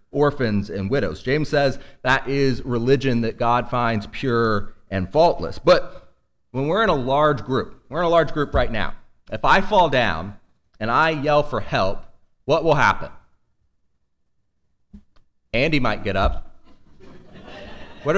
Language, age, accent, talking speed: English, 30-49, American, 150 wpm